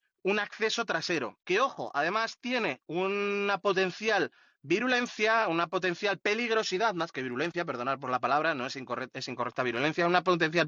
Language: Spanish